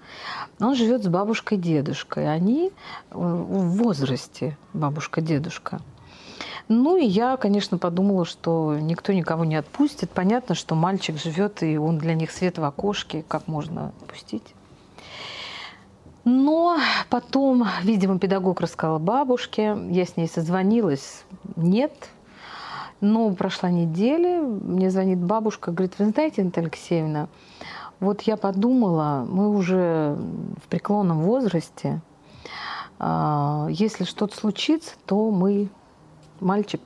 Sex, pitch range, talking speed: female, 165-225 Hz, 110 wpm